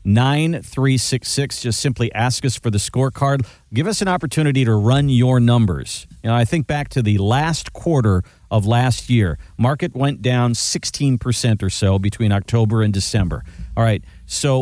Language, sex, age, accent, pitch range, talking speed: English, male, 50-69, American, 110-155 Hz, 185 wpm